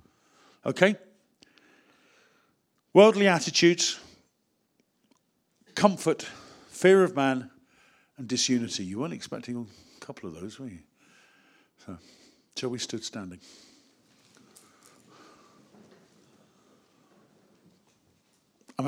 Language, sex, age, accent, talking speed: English, male, 50-69, British, 75 wpm